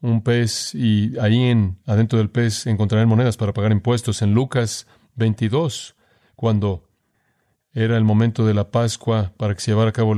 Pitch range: 105-120 Hz